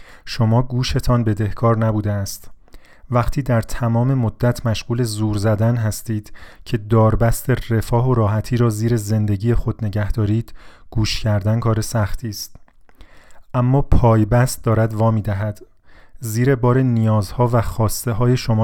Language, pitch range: Persian, 105-120 Hz